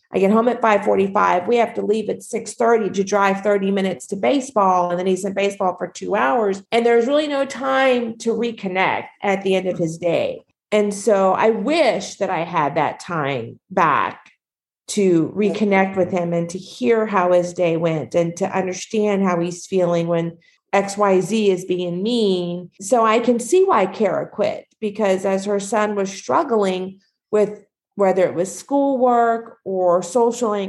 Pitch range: 185-225 Hz